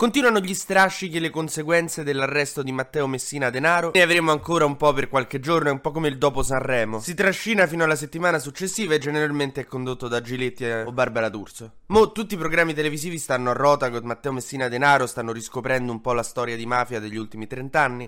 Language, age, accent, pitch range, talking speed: Italian, 20-39, native, 120-160 Hz, 210 wpm